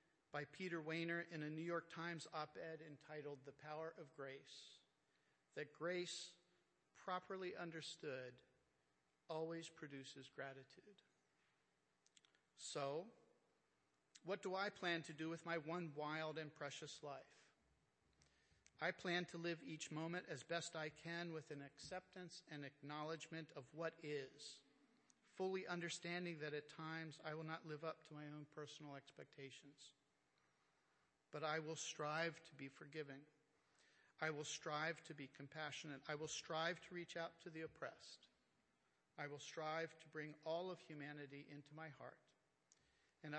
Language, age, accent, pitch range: English, 50-69, American, 145-170 Hz